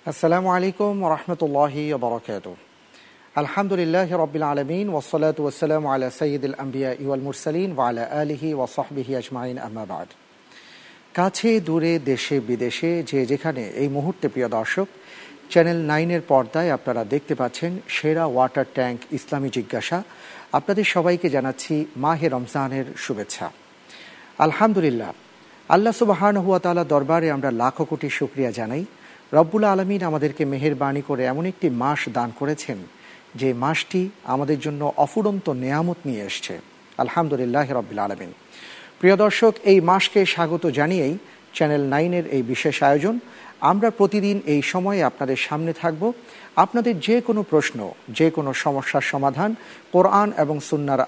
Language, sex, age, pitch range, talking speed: Bengali, male, 50-69, 135-180 Hz, 80 wpm